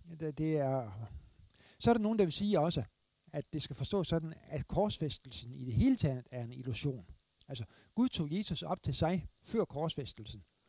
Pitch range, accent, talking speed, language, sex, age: 110-160 Hz, native, 185 wpm, Danish, male, 60-79